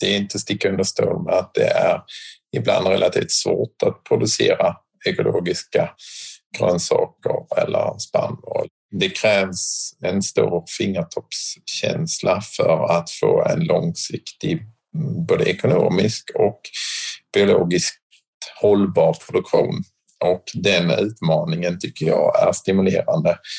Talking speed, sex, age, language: 105 wpm, male, 50-69, Swedish